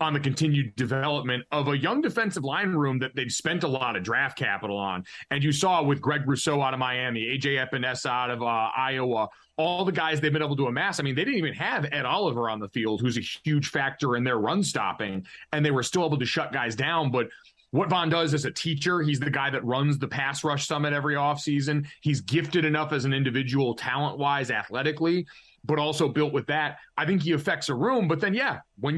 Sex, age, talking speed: male, 30-49, 235 wpm